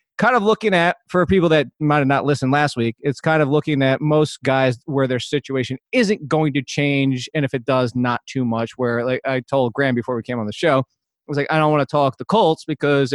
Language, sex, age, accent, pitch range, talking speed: English, male, 30-49, American, 130-155 Hz, 255 wpm